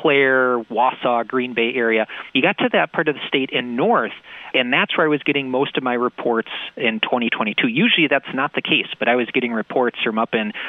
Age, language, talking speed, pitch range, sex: 40-59, English, 220 wpm, 115-145 Hz, male